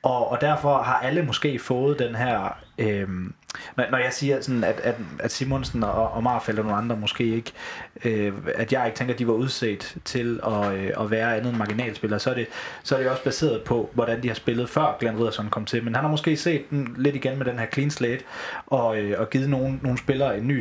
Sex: male